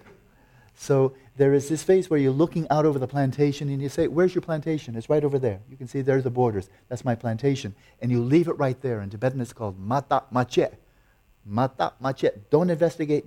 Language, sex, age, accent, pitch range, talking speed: English, male, 50-69, American, 120-150 Hz, 215 wpm